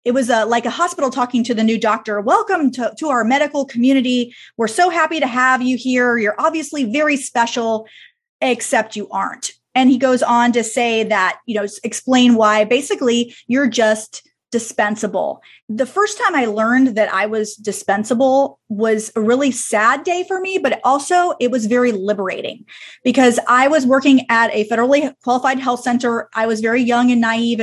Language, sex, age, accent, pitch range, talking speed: English, female, 30-49, American, 220-265 Hz, 180 wpm